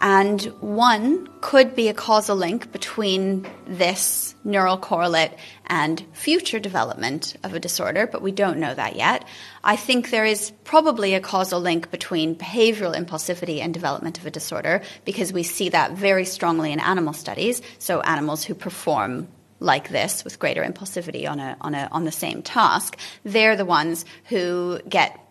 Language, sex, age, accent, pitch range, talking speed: English, female, 30-49, American, 175-215 Hz, 165 wpm